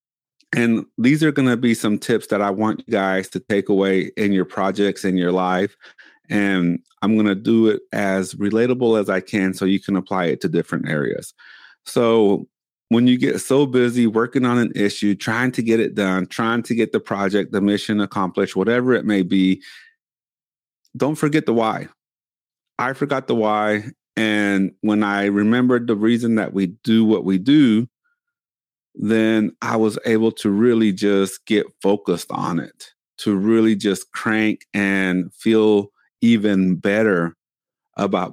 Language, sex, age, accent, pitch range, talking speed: English, male, 30-49, American, 95-115 Hz, 170 wpm